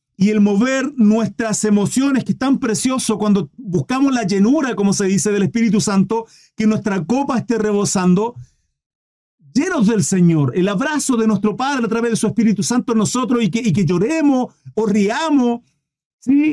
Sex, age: male, 40-59